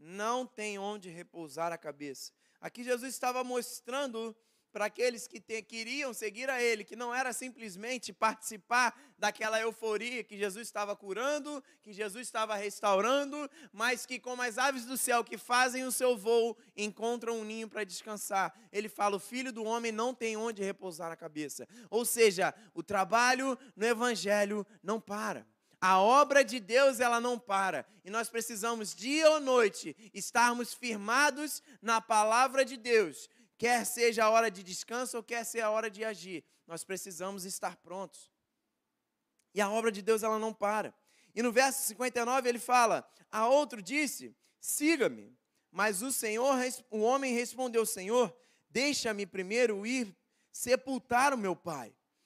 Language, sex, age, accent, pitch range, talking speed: Portuguese, male, 20-39, Brazilian, 210-250 Hz, 155 wpm